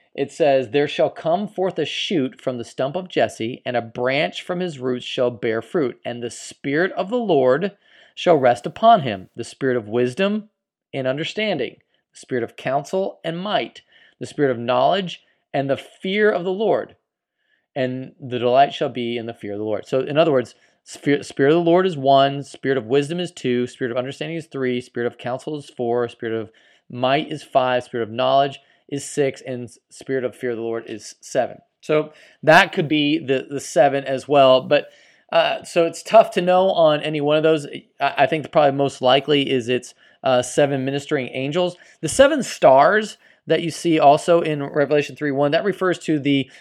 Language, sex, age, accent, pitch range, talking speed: English, male, 30-49, American, 125-160 Hz, 200 wpm